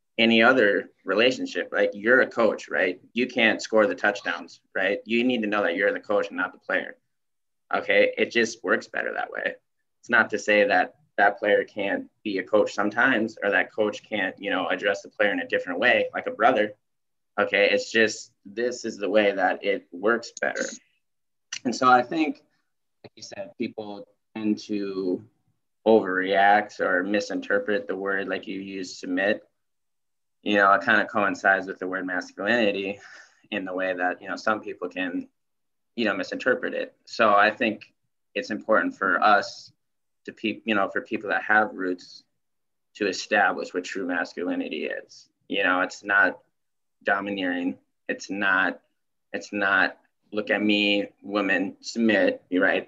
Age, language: 20-39, English